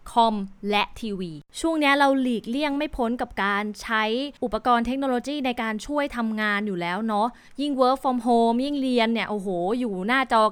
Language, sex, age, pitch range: Thai, female, 20-39, 215-275 Hz